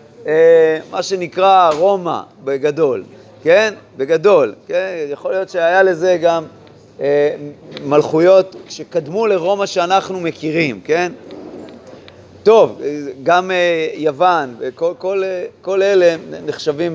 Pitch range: 165-205 Hz